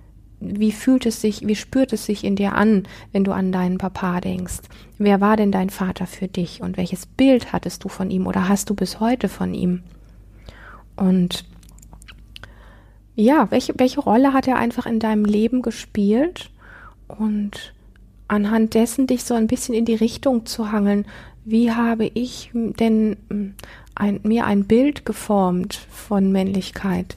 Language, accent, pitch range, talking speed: German, German, 185-215 Hz, 165 wpm